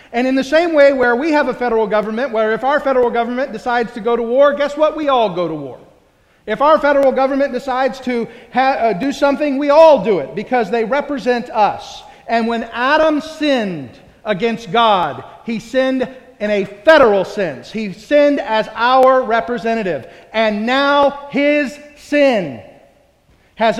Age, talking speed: 40-59, 170 wpm